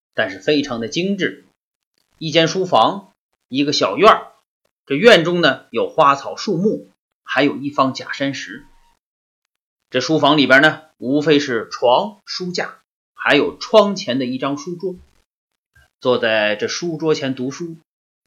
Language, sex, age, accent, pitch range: Chinese, male, 30-49, native, 140-230 Hz